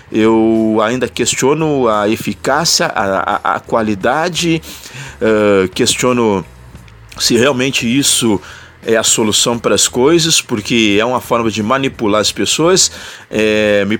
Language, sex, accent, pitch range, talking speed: Portuguese, male, Brazilian, 105-135 Hz, 130 wpm